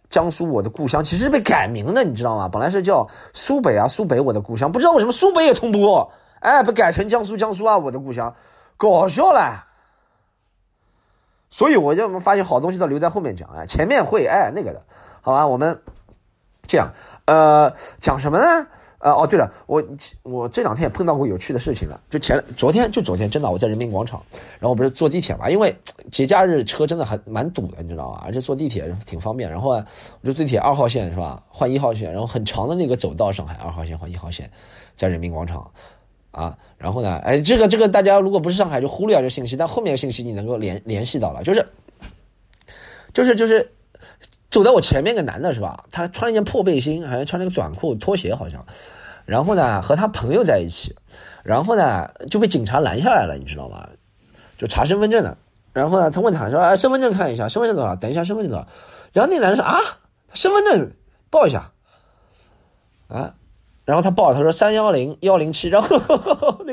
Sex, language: male, Chinese